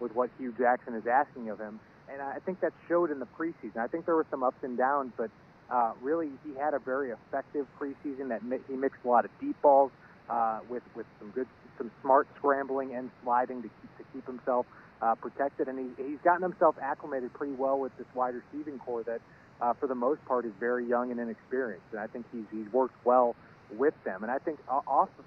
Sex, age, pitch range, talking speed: male, 30-49, 120-140 Hz, 235 wpm